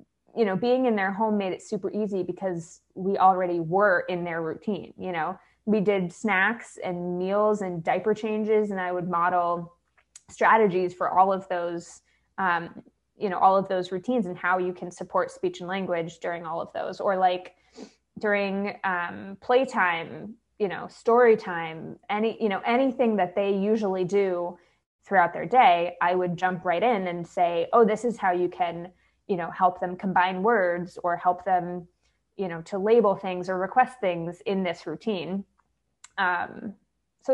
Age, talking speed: 20-39, 175 wpm